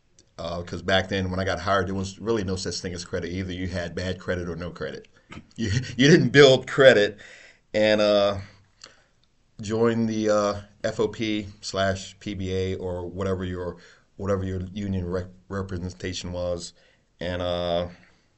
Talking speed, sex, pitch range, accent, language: 155 wpm, male, 90-105 Hz, American, English